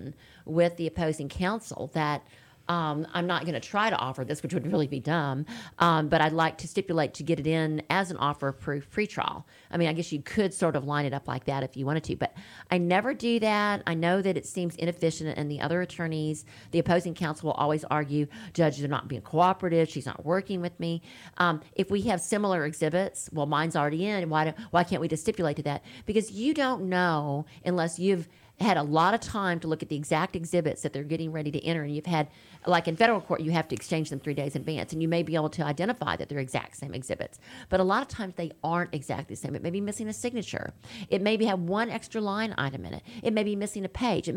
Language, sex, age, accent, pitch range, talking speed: English, female, 40-59, American, 150-190 Hz, 245 wpm